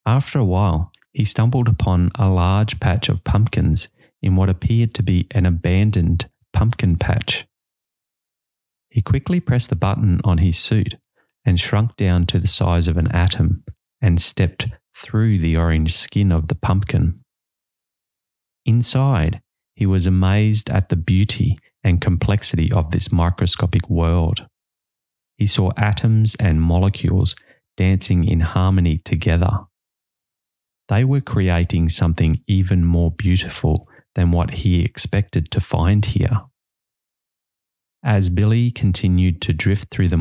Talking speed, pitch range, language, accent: 135 wpm, 90-110 Hz, English, Australian